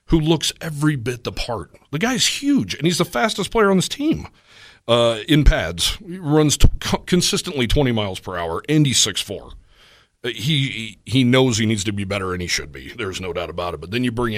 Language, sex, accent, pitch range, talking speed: English, male, American, 100-135 Hz, 215 wpm